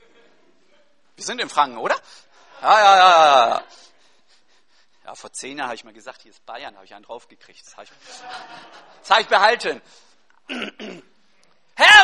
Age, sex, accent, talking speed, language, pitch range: 50-69, male, German, 150 wpm, German, 240-330 Hz